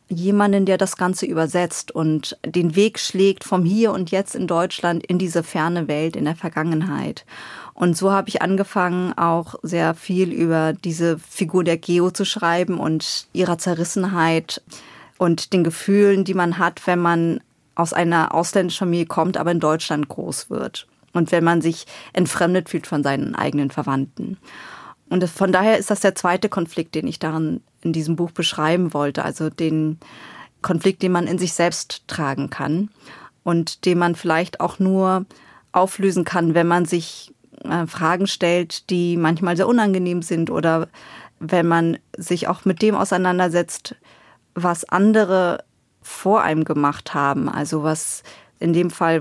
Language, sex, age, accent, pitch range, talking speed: German, female, 20-39, German, 160-185 Hz, 160 wpm